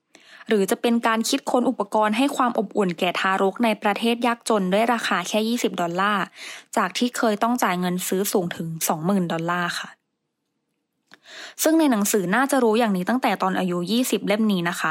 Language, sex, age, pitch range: English, female, 20-39, 190-240 Hz